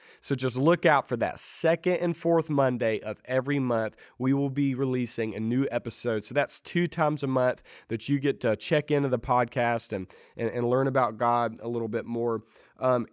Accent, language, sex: American, English, male